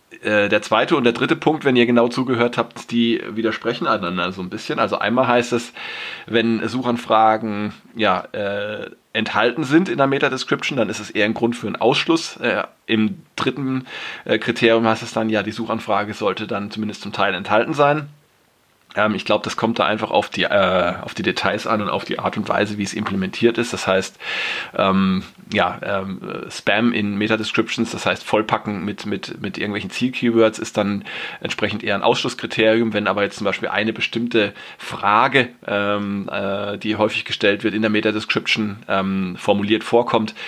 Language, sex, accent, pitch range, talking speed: German, male, German, 105-120 Hz, 180 wpm